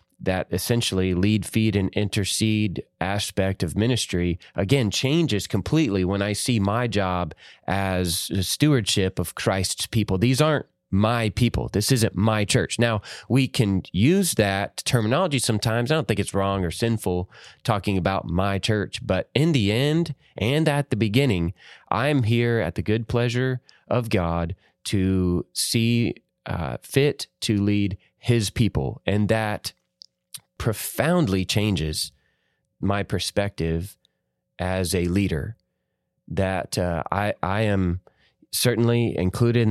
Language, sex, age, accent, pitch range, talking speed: English, male, 30-49, American, 90-115 Hz, 135 wpm